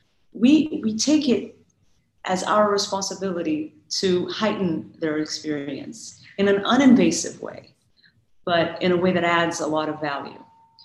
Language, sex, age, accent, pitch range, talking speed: English, female, 30-49, American, 150-215 Hz, 140 wpm